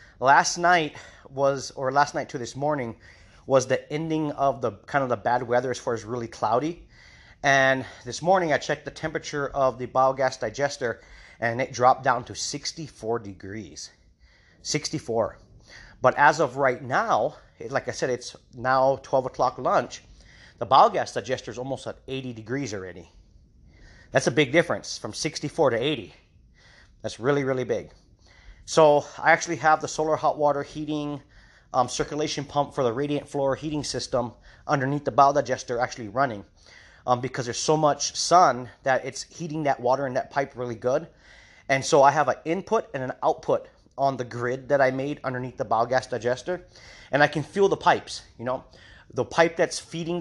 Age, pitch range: 30-49, 120-150 Hz